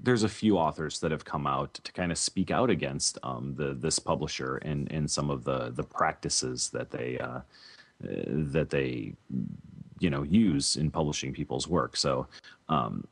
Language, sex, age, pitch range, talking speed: English, male, 30-49, 75-90 Hz, 180 wpm